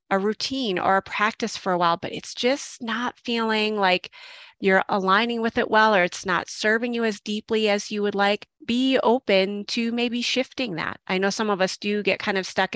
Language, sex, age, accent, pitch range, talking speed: English, female, 30-49, American, 180-230 Hz, 215 wpm